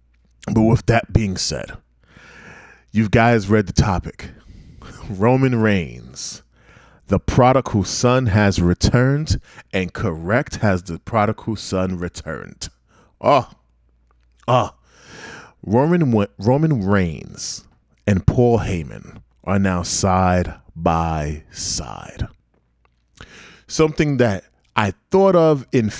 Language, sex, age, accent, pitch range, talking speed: English, male, 30-49, American, 85-120 Hz, 100 wpm